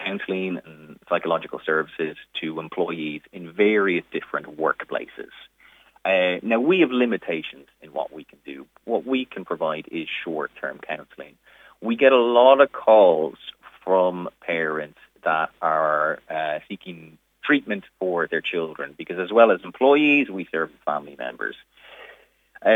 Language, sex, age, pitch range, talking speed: English, male, 30-49, 85-110 Hz, 140 wpm